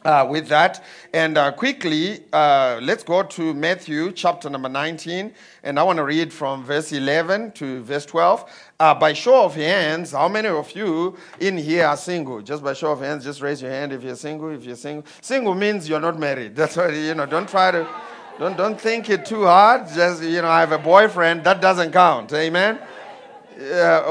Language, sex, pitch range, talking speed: English, male, 150-200 Hz, 205 wpm